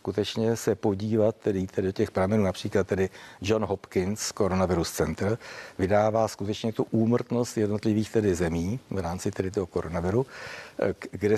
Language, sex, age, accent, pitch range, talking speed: Czech, male, 60-79, native, 100-115 Hz, 140 wpm